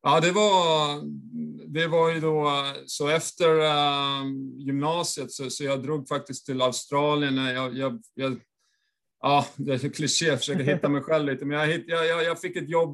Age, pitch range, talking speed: 30-49, 120-145 Hz, 185 wpm